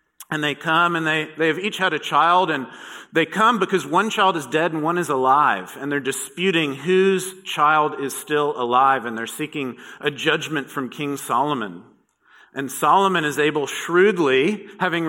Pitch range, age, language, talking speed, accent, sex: 135-175 Hz, 40-59, English, 180 wpm, American, male